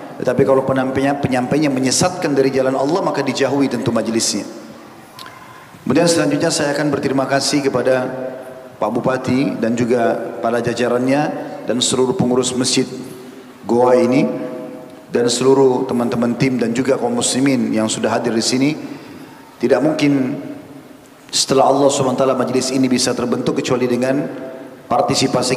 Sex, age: male, 40-59